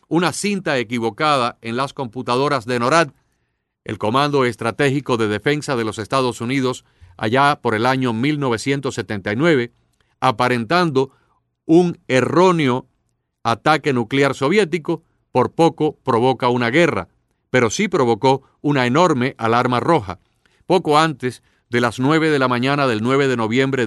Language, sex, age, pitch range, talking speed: Spanish, male, 40-59, 120-155 Hz, 130 wpm